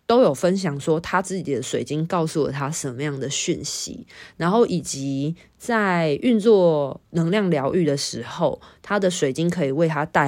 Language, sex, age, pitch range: Chinese, female, 20-39, 150-215 Hz